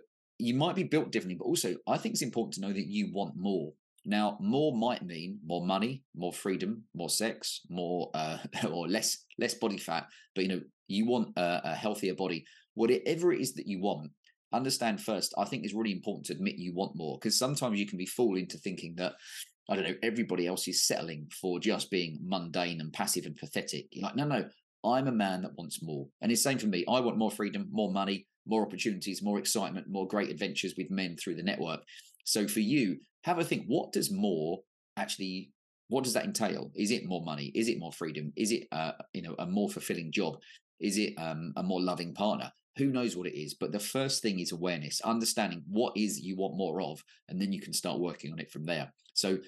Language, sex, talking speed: English, male, 225 wpm